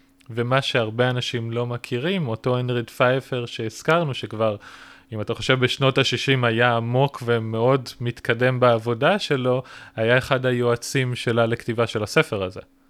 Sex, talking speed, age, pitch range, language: male, 135 wpm, 20-39, 115-130 Hz, Hebrew